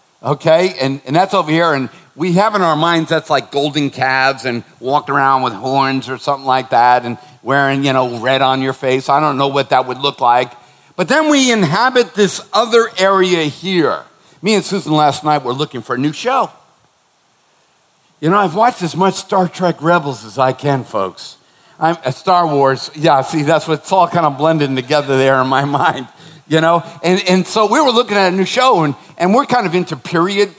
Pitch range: 140-185 Hz